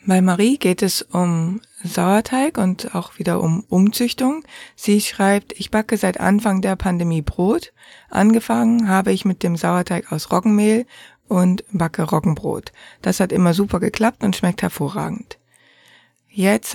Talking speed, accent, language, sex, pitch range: 145 wpm, German, German, female, 175-215 Hz